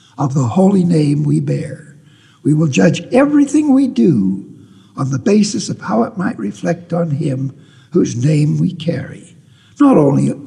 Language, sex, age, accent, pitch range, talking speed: English, male, 60-79, American, 135-200 Hz, 160 wpm